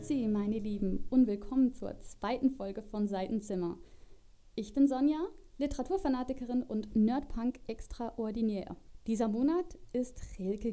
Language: German